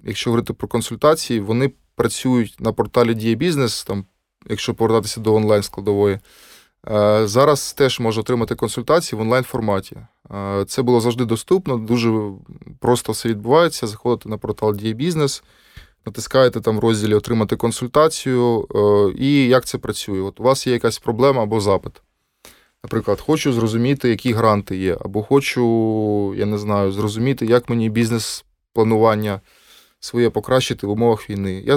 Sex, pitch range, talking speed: male, 105-130 Hz, 135 wpm